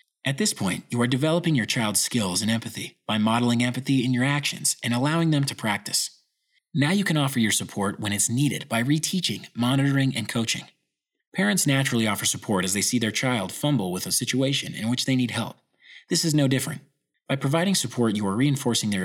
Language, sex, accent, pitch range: English, male, American, 105-145 Hz